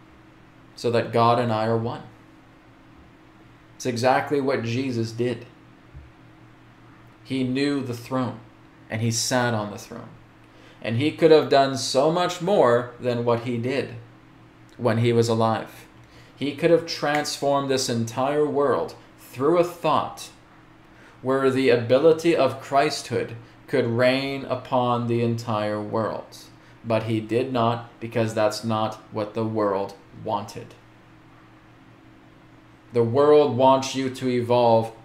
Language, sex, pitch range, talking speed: English, male, 115-135 Hz, 130 wpm